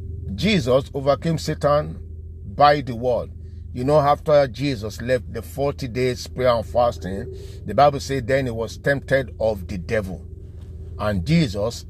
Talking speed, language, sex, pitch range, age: 145 wpm, English, male, 85-140 Hz, 50-69